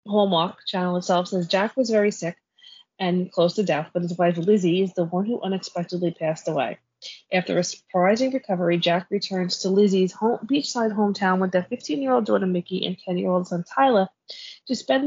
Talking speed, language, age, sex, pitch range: 180 wpm, English, 20-39, female, 175-210 Hz